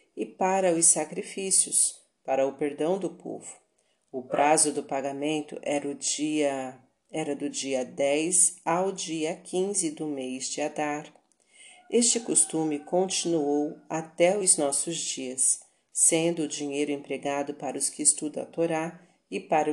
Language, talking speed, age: Portuguese, 140 wpm, 40-59